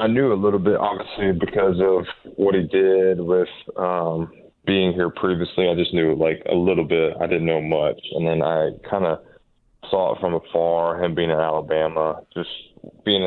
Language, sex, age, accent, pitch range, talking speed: English, male, 20-39, American, 85-95 Hz, 190 wpm